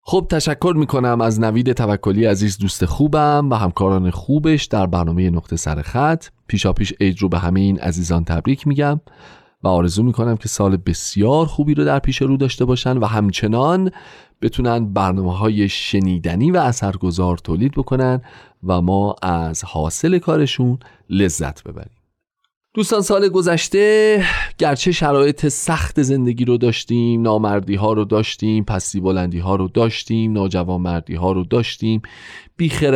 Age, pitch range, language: 40-59, 100-140 Hz, Persian